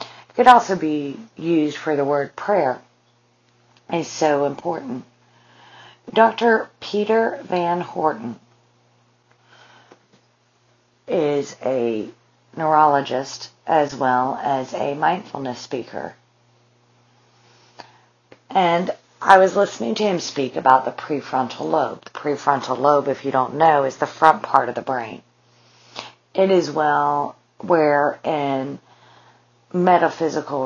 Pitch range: 135-170 Hz